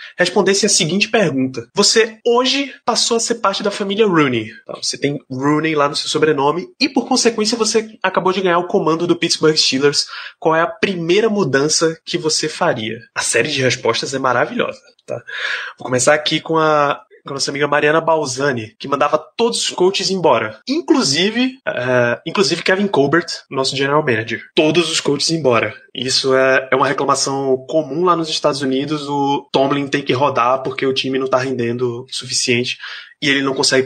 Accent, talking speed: Brazilian, 180 wpm